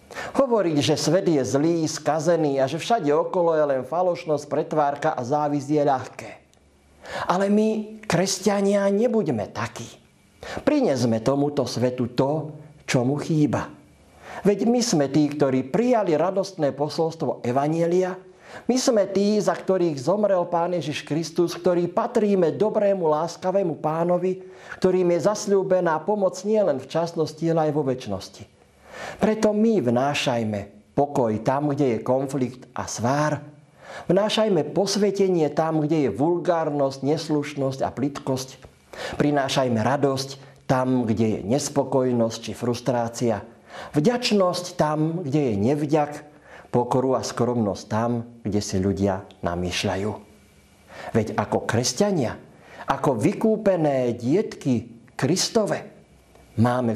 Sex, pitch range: male, 125-180 Hz